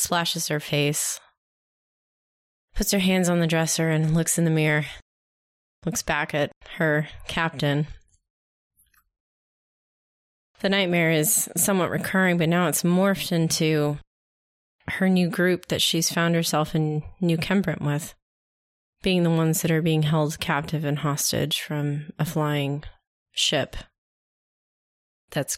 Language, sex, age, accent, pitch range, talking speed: English, female, 30-49, American, 145-170 Hz, 130 wpm